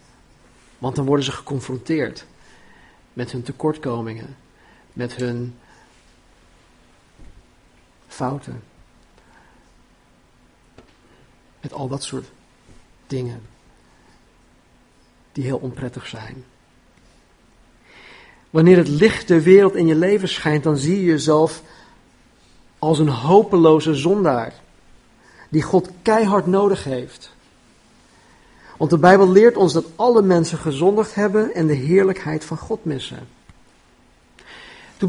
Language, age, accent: Dutch, 50-69, Dutch